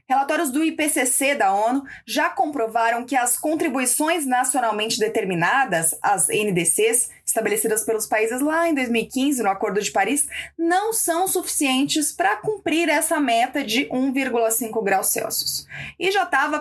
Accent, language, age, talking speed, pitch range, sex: Brazilian, Portuguese, 20-39, 135 wpm, 230-320 Hz, female